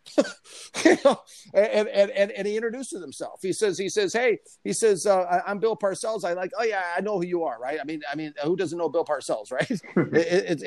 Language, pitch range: English, 130-175 Hz